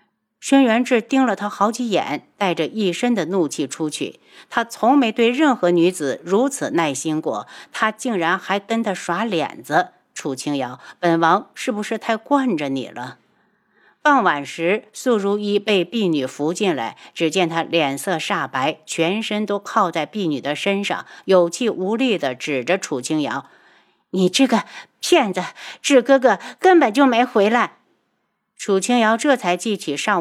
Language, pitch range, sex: Chinese, 170-240 Hz, female